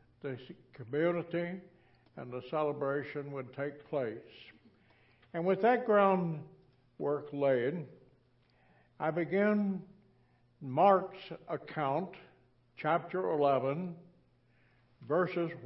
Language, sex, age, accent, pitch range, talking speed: English, male, 60-79, American, 125-170 Hz, 75 wpm